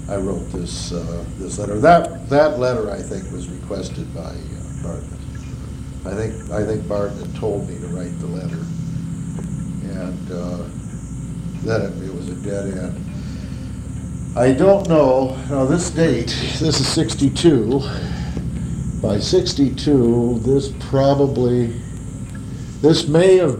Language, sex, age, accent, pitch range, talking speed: English, male, 60-79, American, 110-140 Hz, 130 wpm